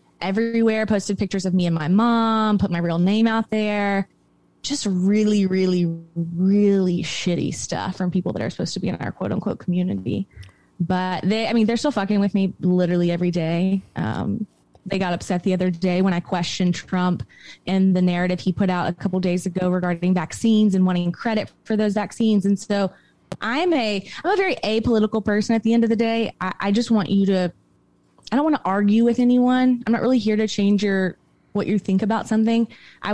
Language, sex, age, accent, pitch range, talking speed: English, female, 20-39, American, 180-220 Hz, 205 wpm